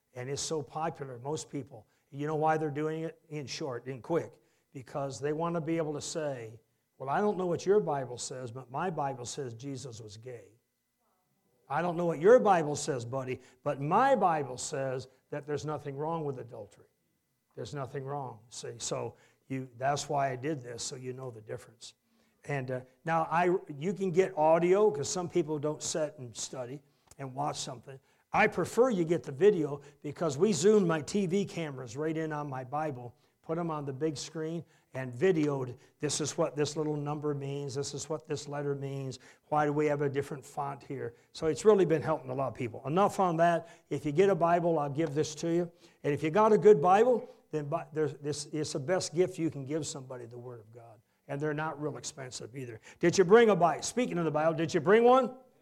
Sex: male